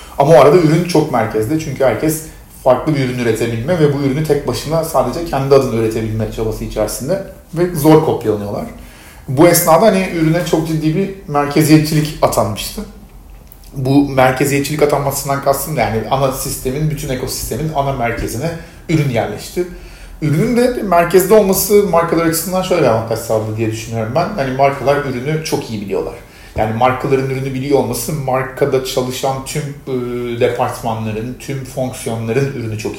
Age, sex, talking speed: 40-59, male, 145 wpm